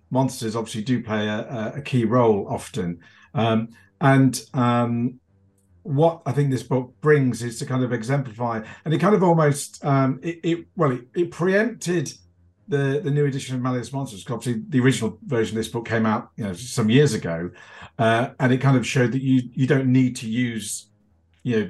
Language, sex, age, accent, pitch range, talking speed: English, male, 50-69, British, 110-135 Hz, 200 wpm